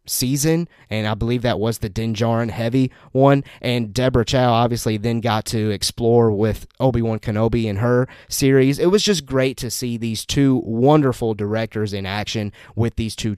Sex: male